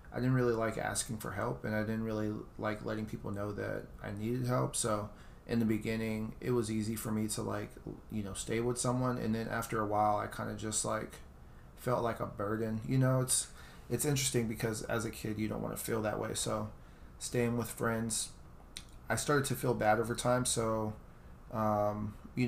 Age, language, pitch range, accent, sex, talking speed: 30-49, English, 105-120 Hz, American, male, 210 wpm